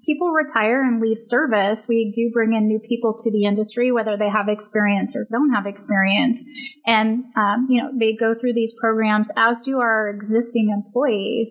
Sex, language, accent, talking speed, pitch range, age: female, English, American, 190 wpm, 210-245 Hz, 30-49